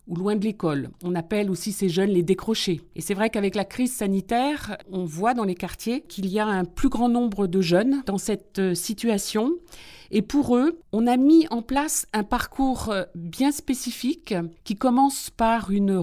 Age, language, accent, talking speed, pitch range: 50-69, French, French, 190 wpm, 195-245 Hz